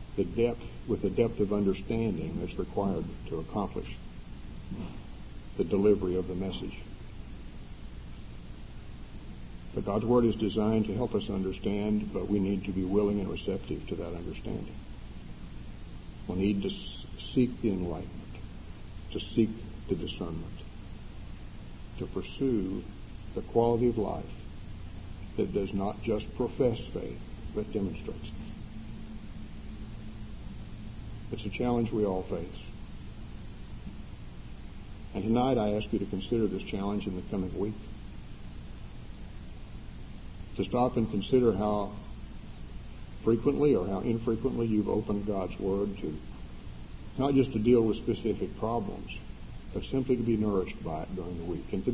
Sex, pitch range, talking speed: male, 95-110 Hz, 130 wpm